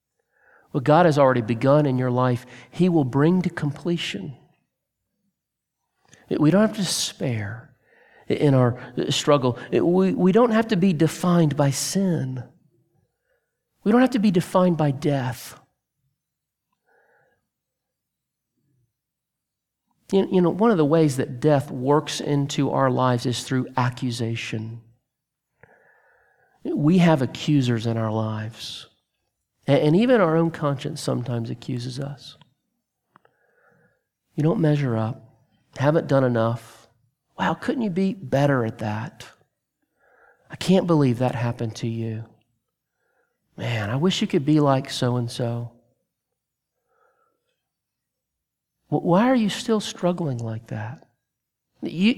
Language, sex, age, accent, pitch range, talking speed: English, male, 50-69, American, 125-170 Hz, 120 wpm